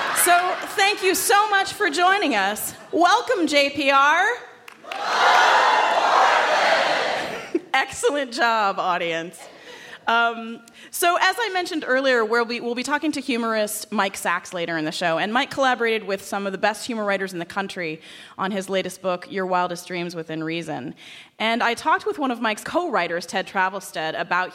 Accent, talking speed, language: American, 155 wpm, English